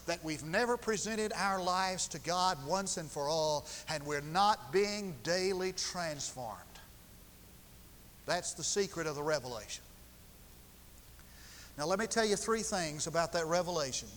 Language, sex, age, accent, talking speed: English, male, 50-69, American, 145 wpm